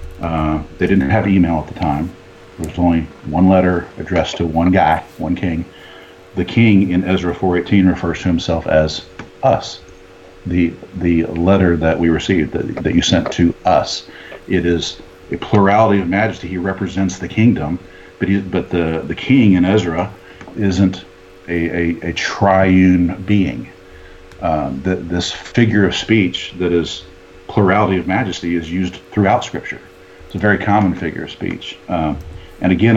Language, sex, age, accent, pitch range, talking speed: English, male, 50-69, American, 85-95 Hz, 165 wpm